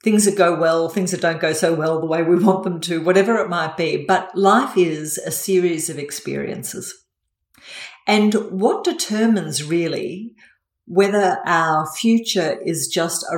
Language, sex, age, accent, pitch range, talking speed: English, female, 50-69, Australian, 160-205 Hz, 165 wpm